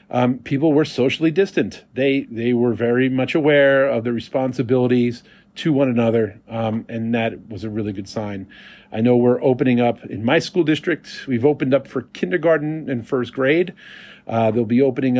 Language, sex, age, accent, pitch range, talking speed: English, male, 40-59, American, 115-140 Hz, 180 wpm